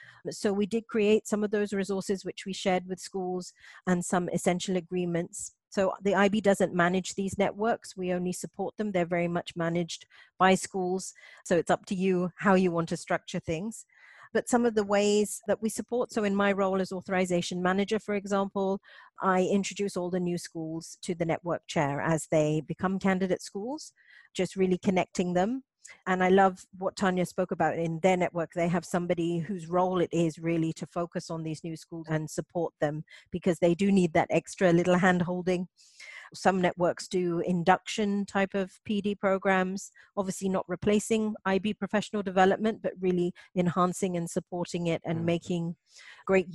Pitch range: 175-200 Hz